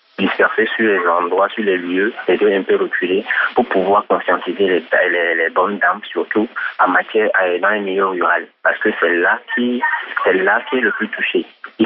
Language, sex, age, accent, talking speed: French, male, 30-49, French, 205 wpm